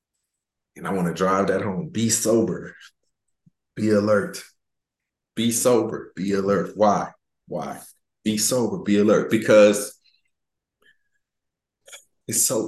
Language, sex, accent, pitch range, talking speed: English, male, American, 90-110 Hz, 115 wpm